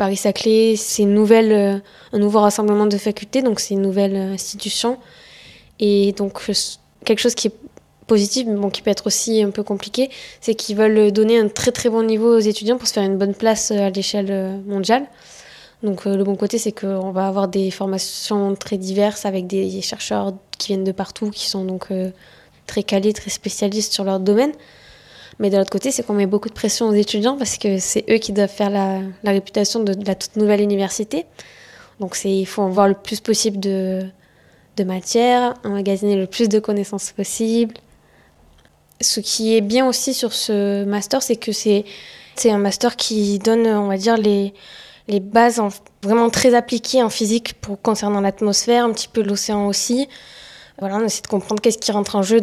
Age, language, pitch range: 20-39, French, 200-225 Hz